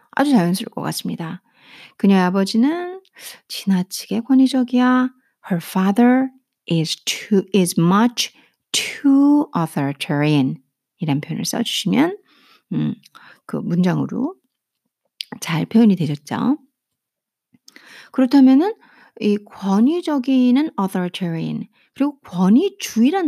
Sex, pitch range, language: female, 195-290 Hz, Korean